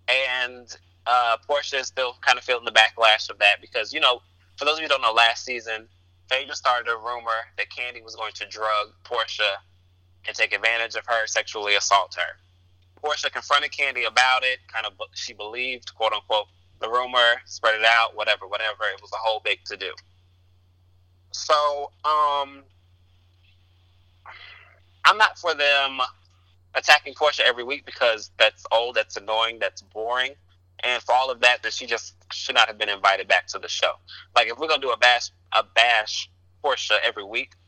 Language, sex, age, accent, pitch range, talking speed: English, male, 20-39, American, 90-125 Hz, 180 wpm